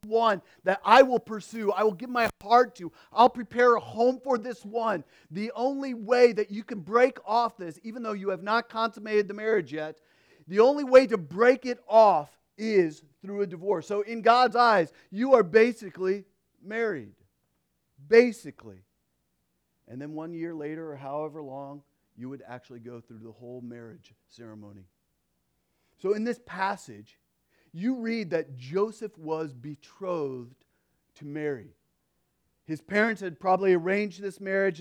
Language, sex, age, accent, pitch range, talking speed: English, male, 40-59, American, 150-225 Hz, 160 wpm